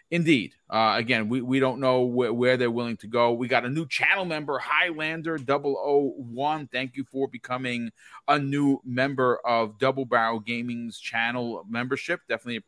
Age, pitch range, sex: 40-59, 120-155 Hz, male